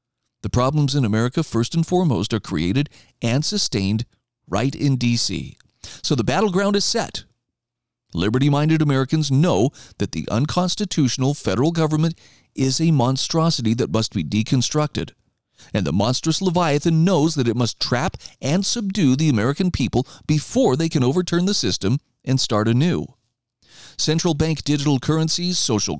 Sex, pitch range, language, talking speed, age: male, 120-160 Hz, English, 145 wpm, 40-59